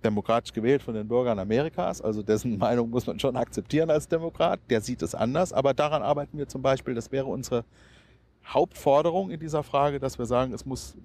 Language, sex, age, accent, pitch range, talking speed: German, male, 40-59, German, 100-130 Hz, 200 wpm